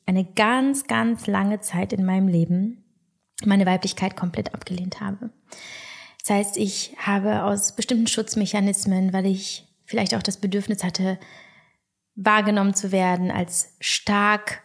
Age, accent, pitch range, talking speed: 20-39, German, 190-215 Hz, 130 wpm